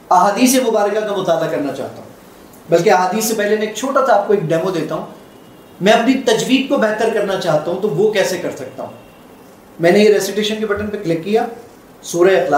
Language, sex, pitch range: Urdu, male, 175-225 Hz